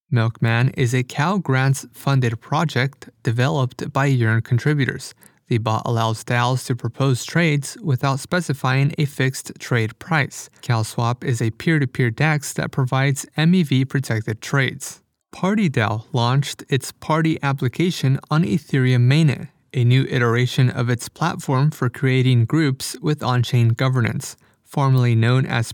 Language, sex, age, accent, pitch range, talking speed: English, male, 30-49, American, 120-150 Hz, 130 wpm